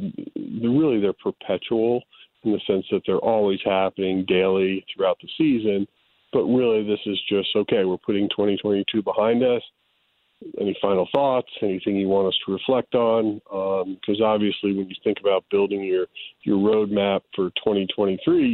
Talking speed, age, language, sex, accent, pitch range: 155 wpm, 40-59, English, male, American, 95-105 Hz